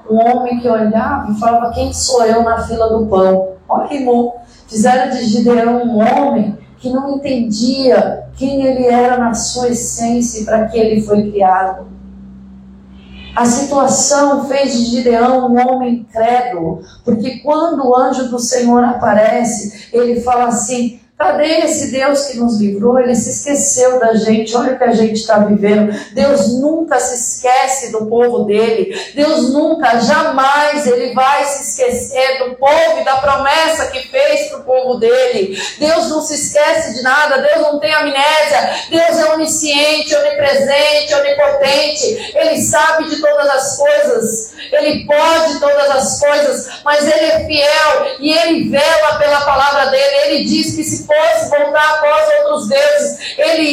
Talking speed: 160 wpm